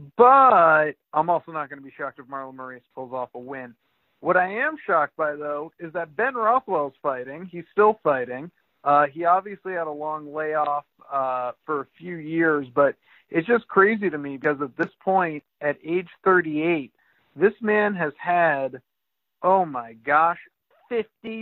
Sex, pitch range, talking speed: male, 150-195 Hz, 175 wpm